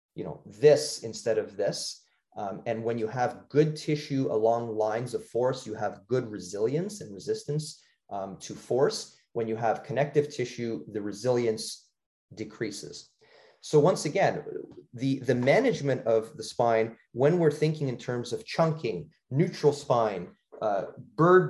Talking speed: 150 wpm